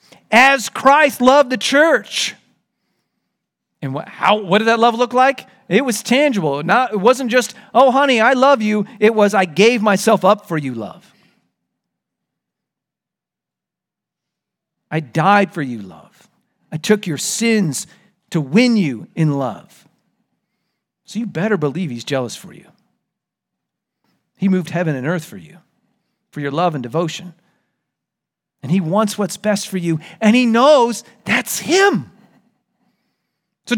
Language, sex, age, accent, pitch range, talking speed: English, male, 40-59, American, 190-255 Hz, 145 wpm